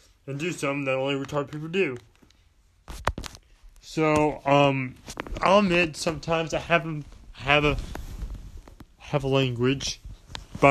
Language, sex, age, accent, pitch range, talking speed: English, male, 20-39, American, 105-135 Hz, 120 wpm